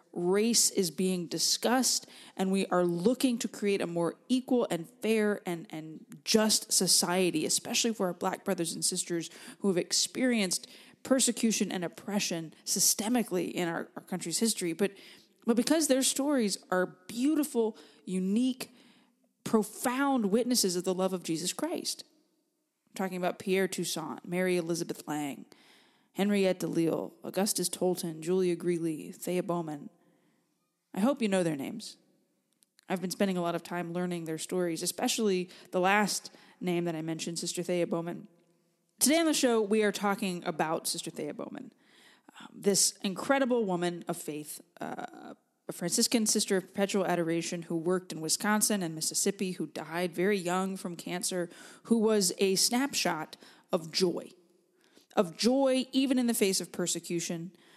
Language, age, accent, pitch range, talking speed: English, 20-39, American, 175-225 Hz, 155 wpm